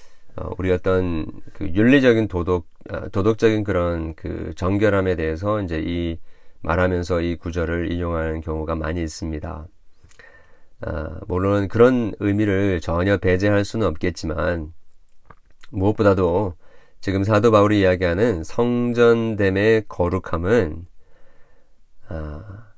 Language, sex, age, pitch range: Korean, male, 40-59, 85-110 Hz